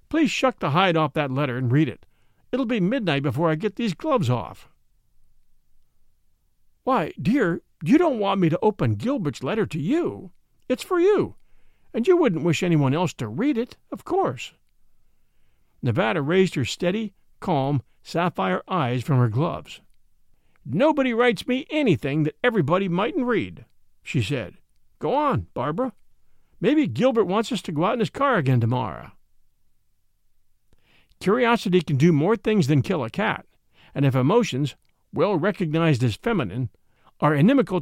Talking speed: 155 wpm